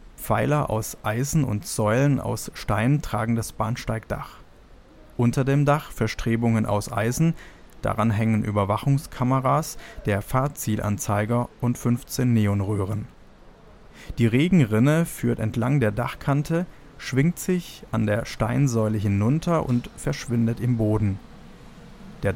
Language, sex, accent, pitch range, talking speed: German, male, German, 105-125 Hz, 110 wpm